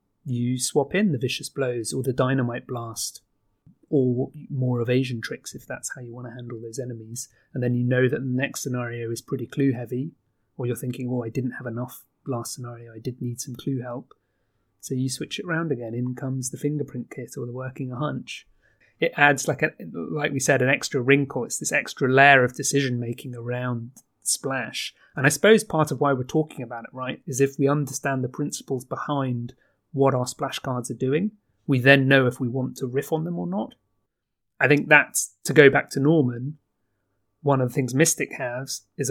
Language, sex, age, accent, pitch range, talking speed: English, male, 30-49, British, 120-140 Hz, 205 wpm